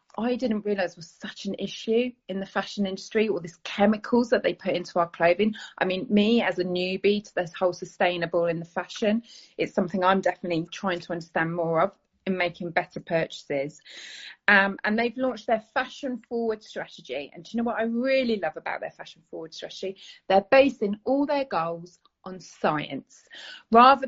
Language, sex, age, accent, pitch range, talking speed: English, female, 30-49, British, 180-240 Hz, 190 wpm